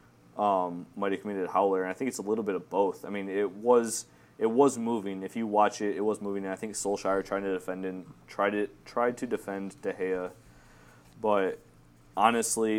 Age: 20-39